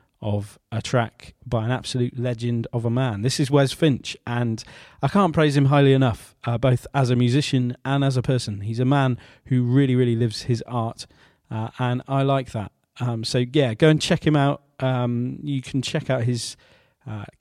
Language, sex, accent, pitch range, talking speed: English, male, British, 115-140 Hz, 205 wpm